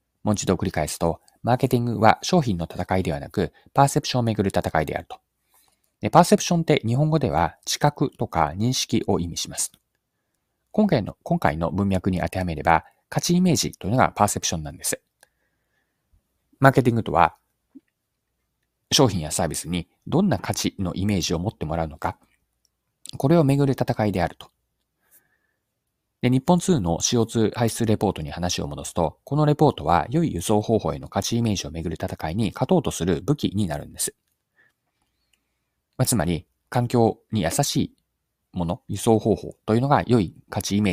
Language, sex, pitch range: Japanese, male, 85-130 Hz